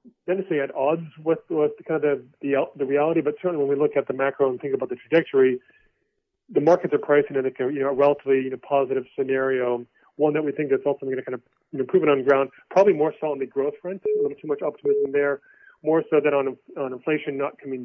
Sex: male